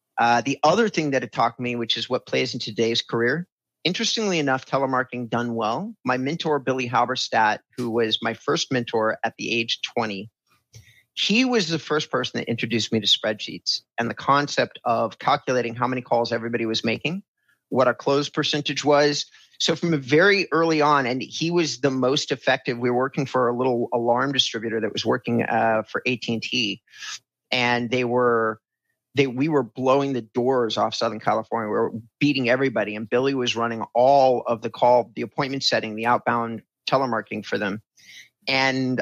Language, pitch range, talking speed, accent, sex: English, 120-140 Hz, 180 wpm, American, male